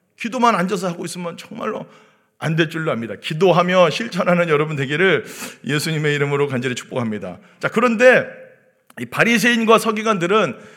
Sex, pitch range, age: male, 140-225 Hz, 40-59